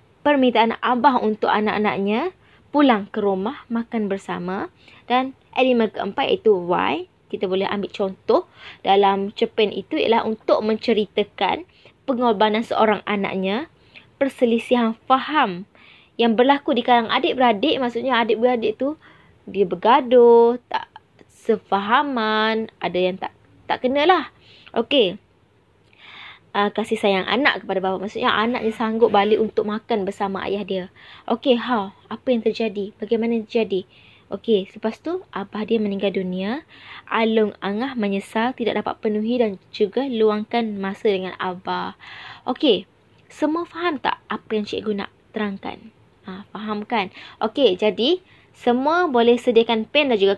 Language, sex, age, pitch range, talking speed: Malay, female, 20-39, 200-245 Hz, 130 wpm